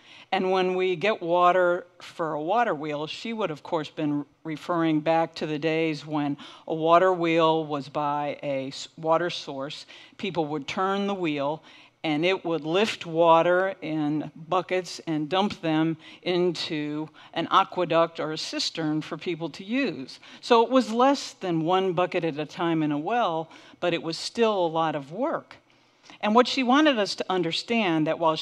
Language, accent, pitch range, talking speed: English, American, 155-185 Hz, 175 wpm